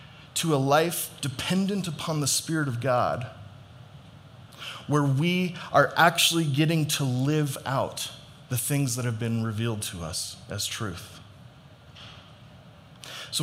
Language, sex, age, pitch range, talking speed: English, male, 30-49, 125-155 Hz, 125 wpm